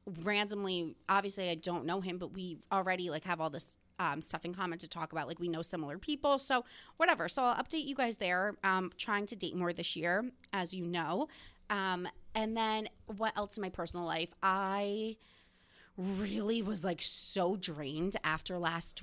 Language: English